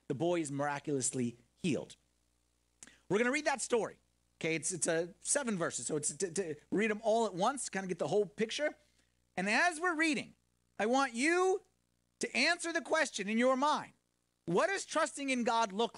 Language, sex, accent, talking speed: English, male, American, 195 wpm